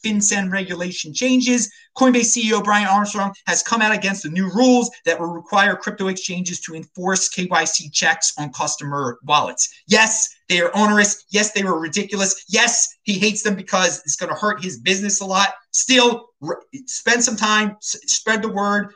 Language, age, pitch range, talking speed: English, 30-49, 190-255 Hz, 175 wpm